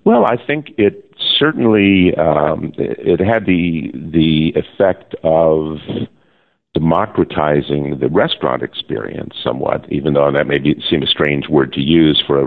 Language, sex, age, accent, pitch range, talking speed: English, male, 50-69, American, 70-80 Hz, 145 wpm